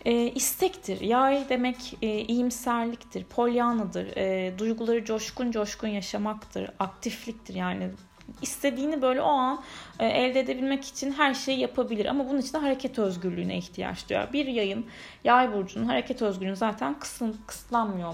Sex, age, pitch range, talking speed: female, 10-29, 205-245 Hz, 130 wpm